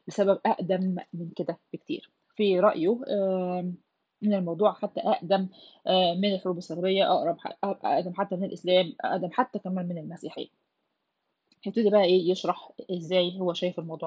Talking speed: 135 wpm